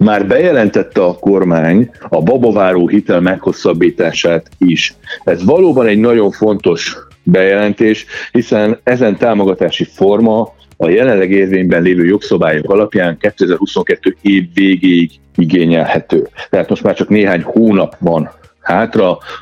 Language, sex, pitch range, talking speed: Hungarian, male, 90-105 Hz, 115 wpm